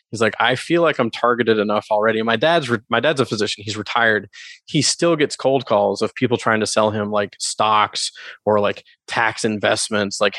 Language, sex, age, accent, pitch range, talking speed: English, male, 20-39, American, 105-120 Hz, 210 wpm